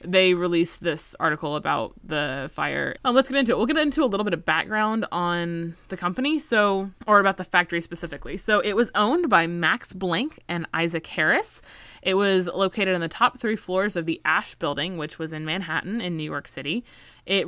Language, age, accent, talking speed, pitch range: English, 20-39, American, 205 wpm, 160-195 Hz